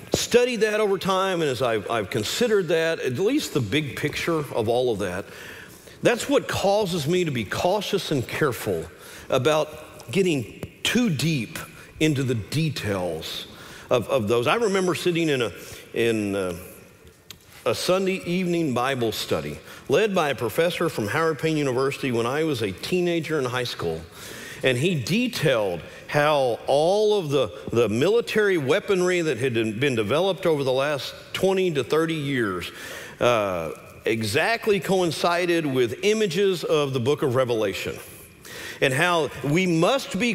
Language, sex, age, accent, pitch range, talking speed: English, male, 50-69, American, 145-195 Hz, 150 wpm